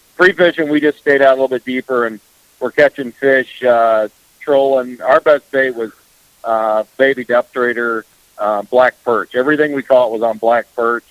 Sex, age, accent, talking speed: male, 50-69, American, 180 wpm